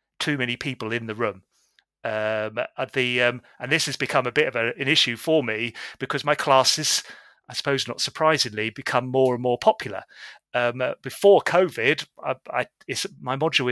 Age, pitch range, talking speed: 30-49, 115-145 Hz, 185 wpm